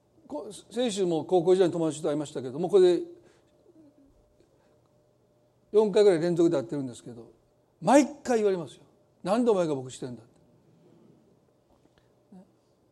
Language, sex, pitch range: Japanese, male, 150-210 Hz